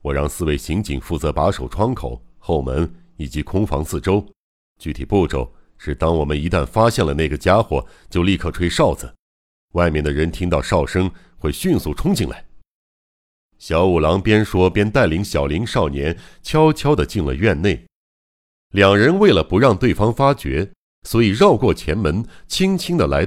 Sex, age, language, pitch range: male, 60-79, Chinese, 75-105 Hz